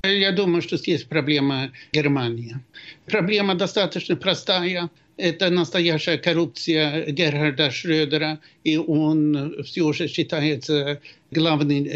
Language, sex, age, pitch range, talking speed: Russian, male, 60-79, 145-165 Hz, 100 wpm